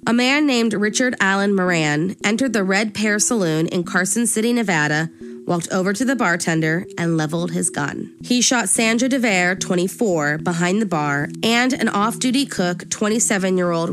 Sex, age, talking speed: female, 20-39, 160 wpm